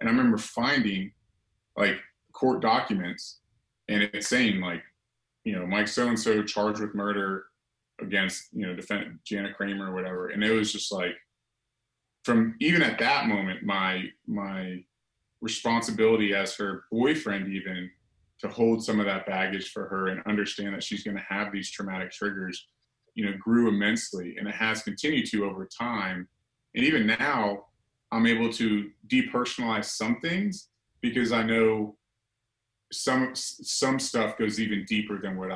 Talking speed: 155 wpm